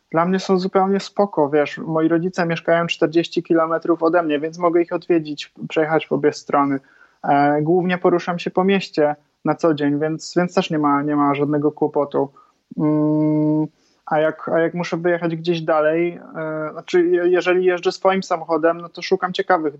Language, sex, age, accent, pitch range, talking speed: Polish, male, 20-39, native, 150-175 Hz, 165 wpm